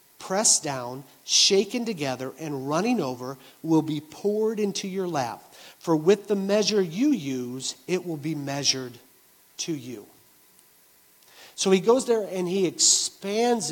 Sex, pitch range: male, 145-195 Hz